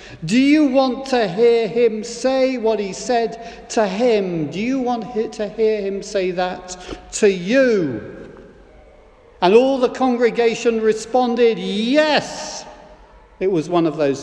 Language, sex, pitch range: English, male, 190-265 Hz